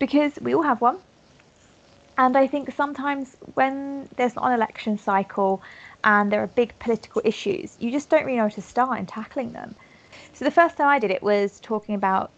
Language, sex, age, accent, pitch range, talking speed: English, female, 20-39, British, 200-250 Hz, 200 wpm